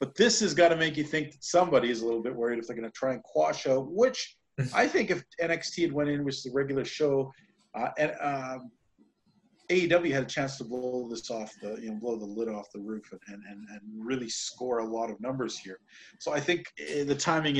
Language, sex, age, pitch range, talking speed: English, male, 40-59, 115-145 Hz, 240 wpm